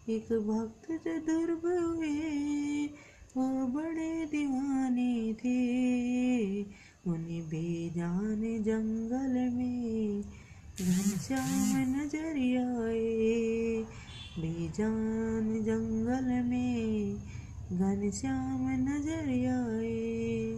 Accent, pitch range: native, 220-265 Hz